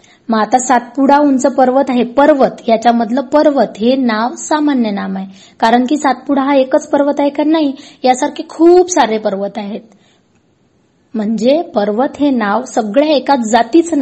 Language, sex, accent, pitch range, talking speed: Marathi, female, native, 210-275 Hz, 150 wpm